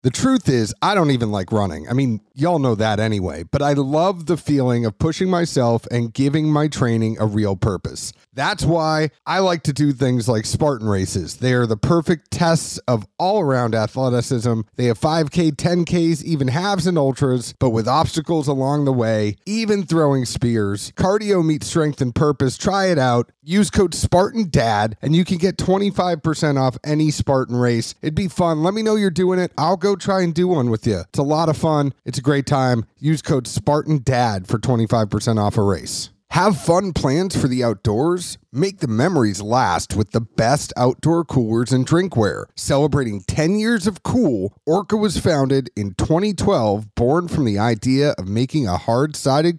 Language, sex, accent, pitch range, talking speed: English, male, American, 115-165 Hz, 190 wpm